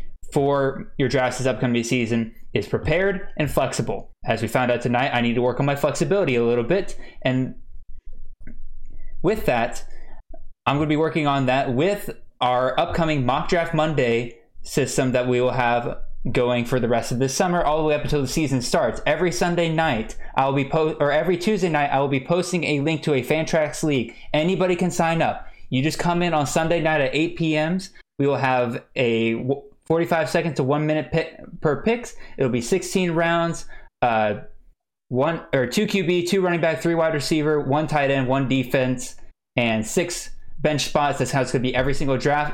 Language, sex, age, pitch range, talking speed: English, male, 10-29, 125-160 Hz, 200 wpm